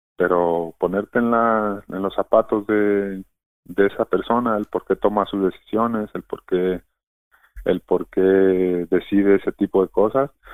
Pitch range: 85-100 Hz